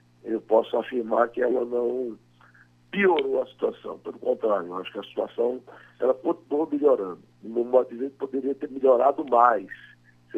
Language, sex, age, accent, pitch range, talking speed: Portuguese, male, 60-79, Brazilian, 105-160 Hz, 170 wpm